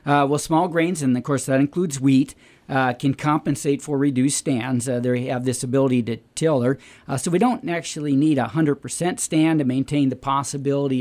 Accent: American